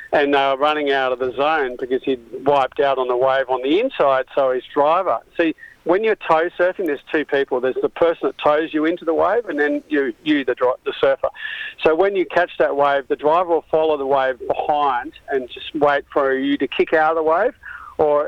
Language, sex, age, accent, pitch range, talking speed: English, male, 50-69, Australian, 140-175 Hz, 230 wpm